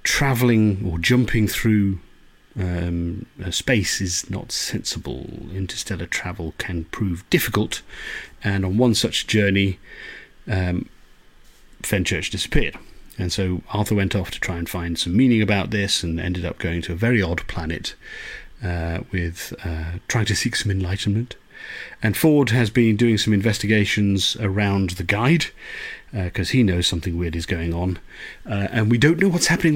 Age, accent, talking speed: 40-59, British, 155 wpm